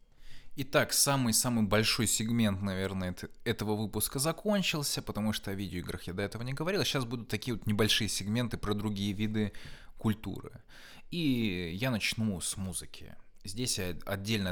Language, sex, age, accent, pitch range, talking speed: Russian, male, 20-39, native, 95-115 Hz, 145 wpm